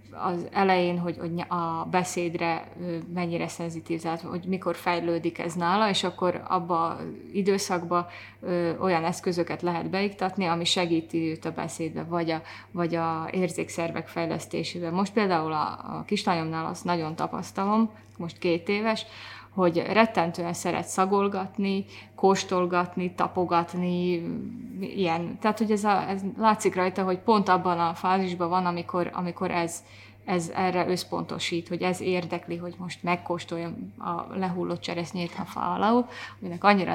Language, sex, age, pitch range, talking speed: Hungarian, female, 20-39, 170-195 Hz, 130 wpm